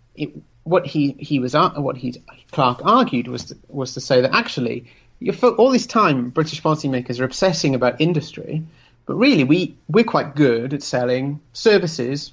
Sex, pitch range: male, 125-160 Hz